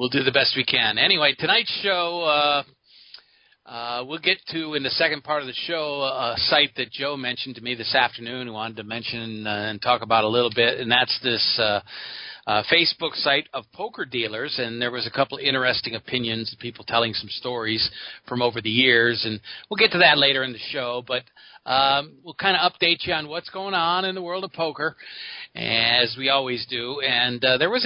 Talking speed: 220 wpm